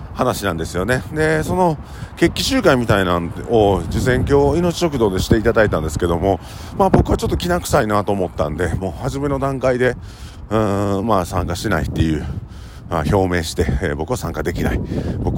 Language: Japanese